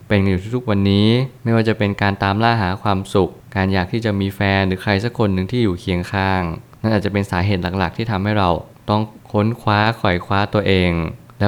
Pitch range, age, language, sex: 95-115 Hz, 20-39, Thai, male